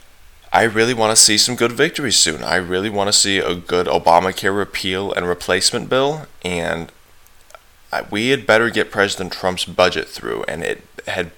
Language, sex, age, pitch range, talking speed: English, male, 20-39, 90-110 Hz, 175 wpm